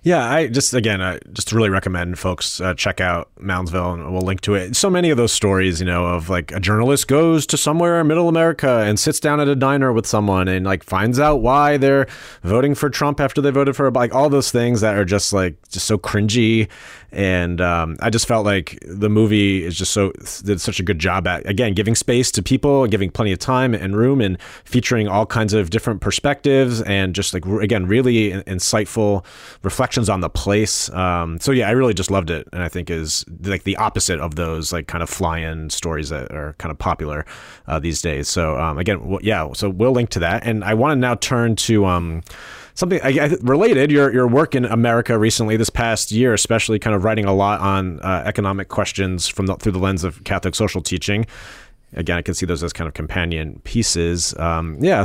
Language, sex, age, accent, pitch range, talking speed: English, male, 30-49, American, 90-120 Hz, 220 wpm